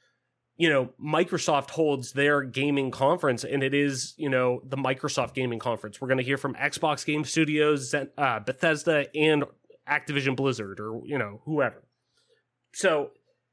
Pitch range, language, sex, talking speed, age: 130-160 Hz, English, male, 150 wpm, 30-49